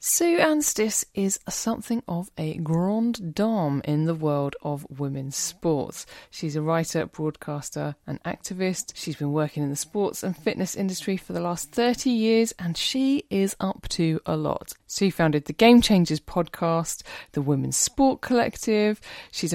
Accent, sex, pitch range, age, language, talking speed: British, female, 150-225 Hz, 30-49, English, 165 wpm